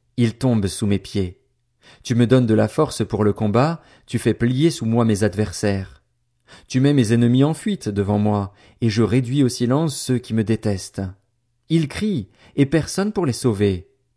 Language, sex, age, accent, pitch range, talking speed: French, male, 40-59, French, 110-135 Hz, 190 wpm